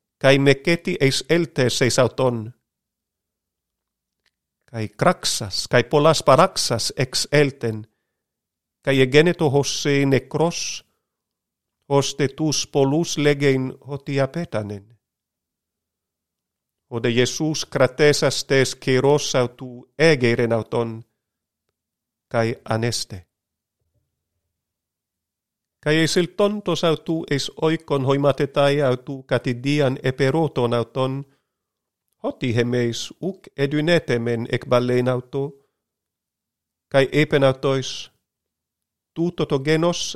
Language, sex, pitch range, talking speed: Greek, male, 120-150 Hz, 80 wpm